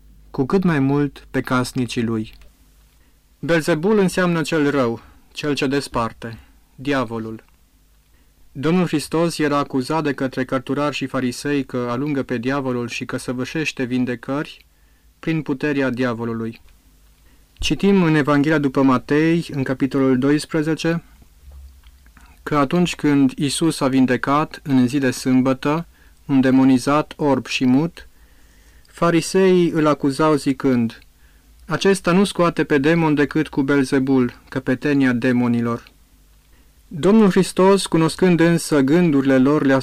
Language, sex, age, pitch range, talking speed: Romanian, male, 30-49, 125-150 Hz, 120 wpm